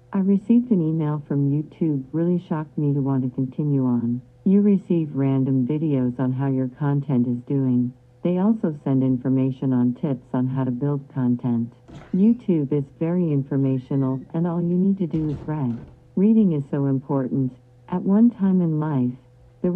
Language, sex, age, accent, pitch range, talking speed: English, female, 50-69, American, 130-170 Hz, 175 wpm